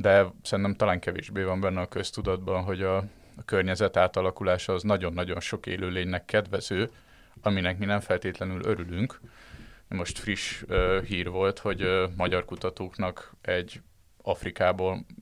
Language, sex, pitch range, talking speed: Hungarian, male, 90-100 Hz, 135 wpm